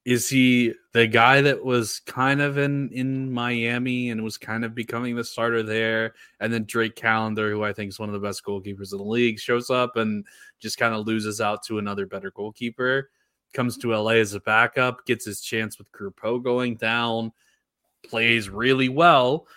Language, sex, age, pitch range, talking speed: English, male, 20-39, 110-135 Hz, 195 wpm